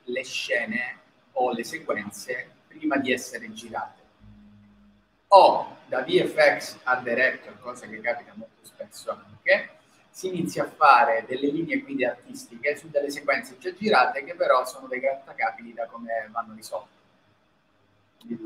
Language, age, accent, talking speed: Italian, 30-49, native, 140 wpm